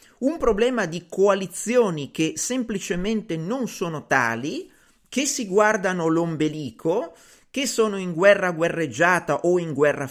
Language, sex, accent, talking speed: Italian, male, native, 125 wpm